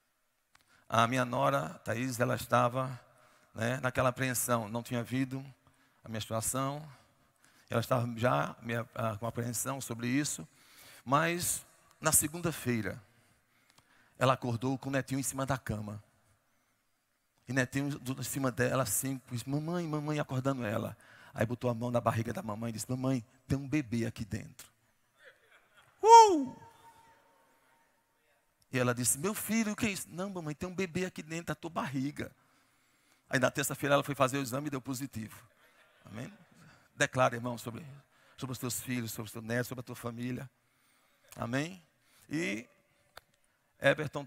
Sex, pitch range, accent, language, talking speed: male, 115-135 Hz, Brazilian, Portuguese, 155 wpm